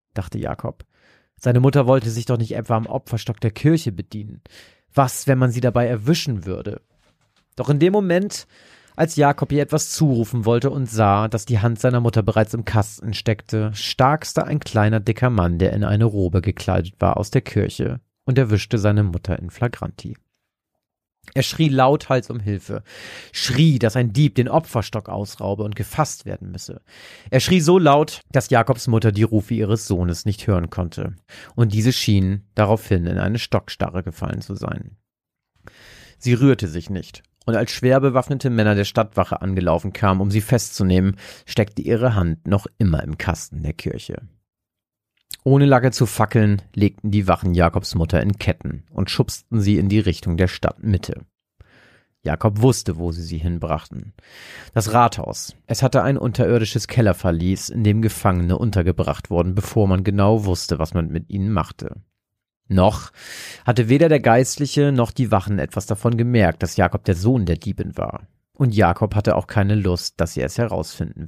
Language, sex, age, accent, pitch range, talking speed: German, male, 40-59, German, 95-125 Hz, 170 wpm